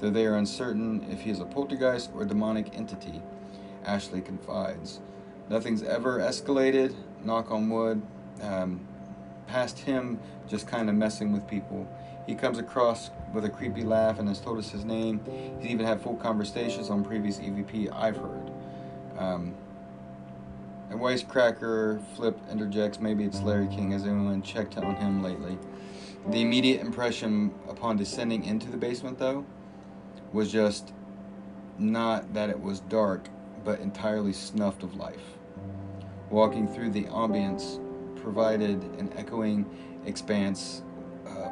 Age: 30-49